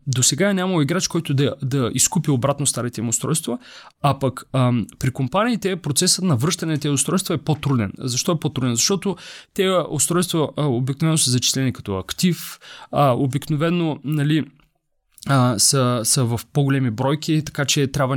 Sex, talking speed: male, 160 wpm